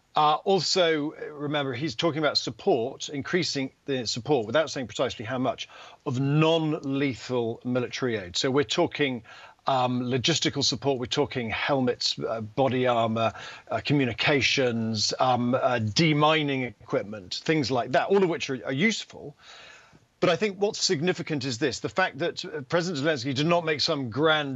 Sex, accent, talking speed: male, British, 155 wpm